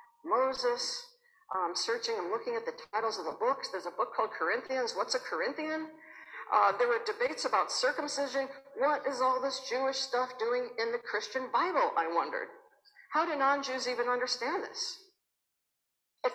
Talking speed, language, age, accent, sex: 165 wpm, English, 60-79, American, female